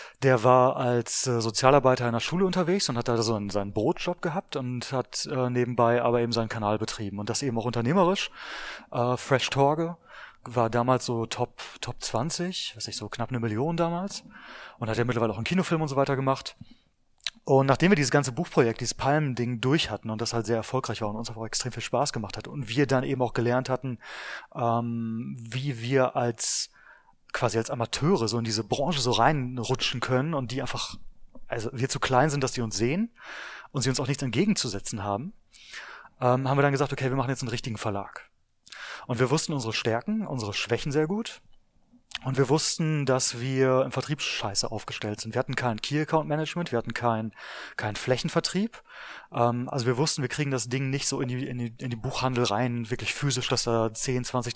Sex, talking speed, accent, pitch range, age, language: male, 200 wpm, German, 115-140 Hz, 30-49, German